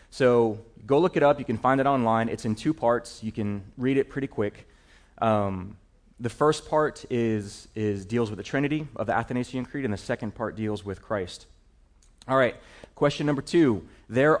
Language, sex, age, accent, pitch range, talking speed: English, male, 30-49, American, 100-130 Hz, 195 wpm